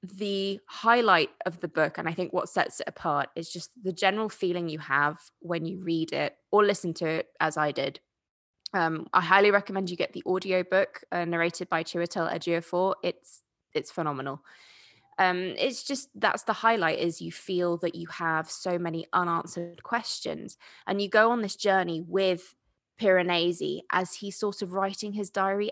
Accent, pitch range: British, 175-205 Hz